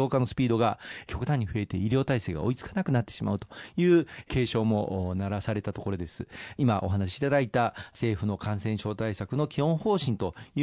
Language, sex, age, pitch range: Japanese, male, 40-59, 105-135 Hz